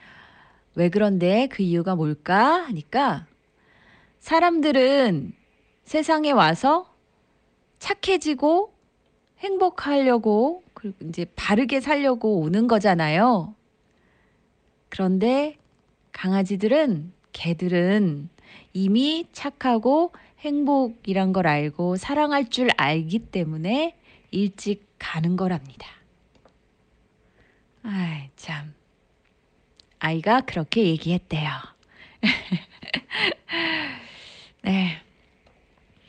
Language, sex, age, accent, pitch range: Korean, female, 30-49, native, 180-270 Hz